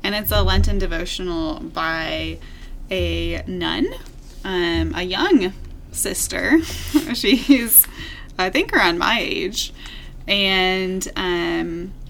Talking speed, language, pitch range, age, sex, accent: 100 wpm, English, 170-200 Hz, 20-39, female, American